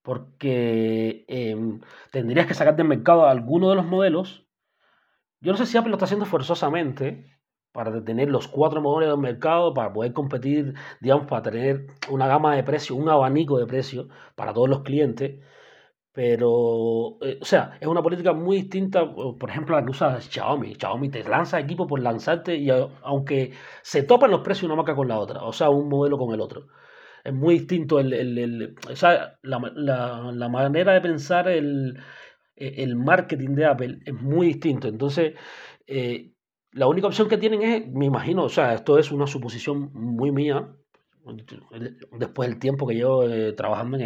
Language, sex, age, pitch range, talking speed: Spanish, male, 30-49, 125-165 Hz, 180 wpm